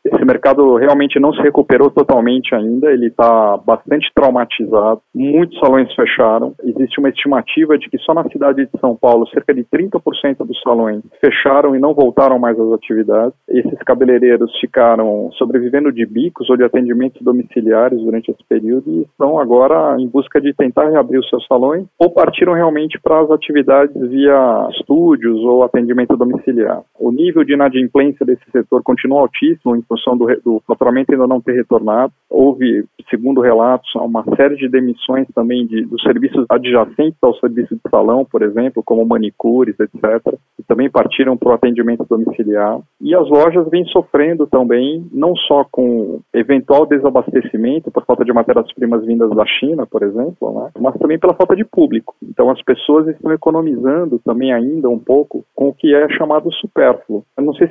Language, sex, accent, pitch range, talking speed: Portuguese, male, Brazilian, 120-150 Hz, 165 wpm